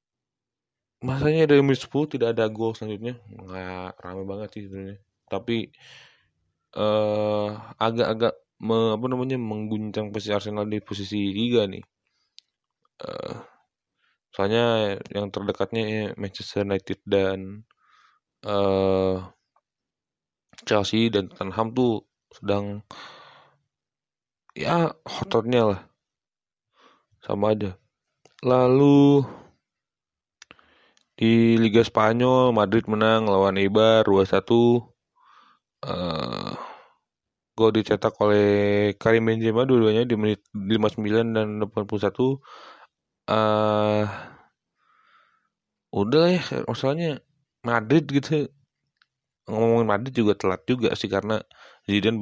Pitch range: 100-115 Hz